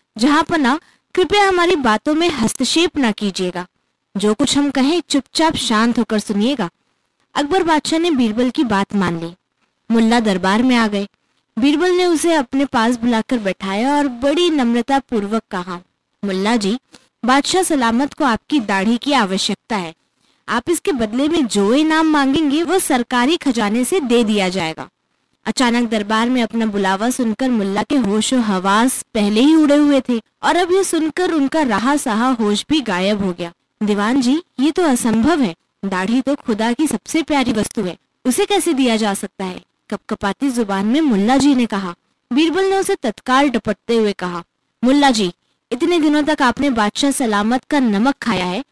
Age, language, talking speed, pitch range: 20-39, Hindi, 175 wpm, 215-300 Hz